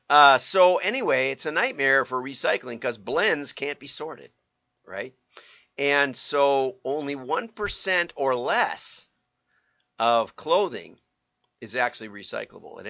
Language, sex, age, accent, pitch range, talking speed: English, male, 50-69, American, 115-145 Hz, 125 wpm